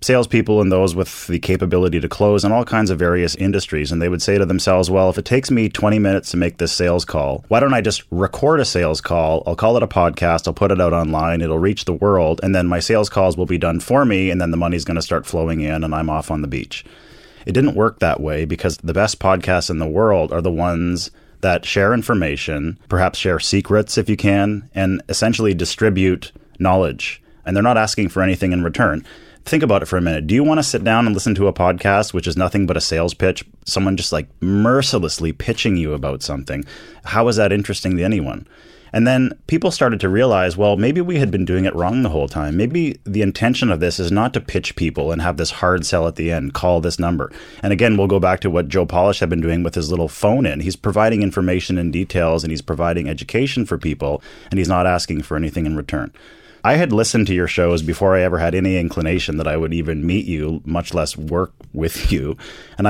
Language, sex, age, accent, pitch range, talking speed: English, male, 20-39, American, 85-100 Hz, 240 wpm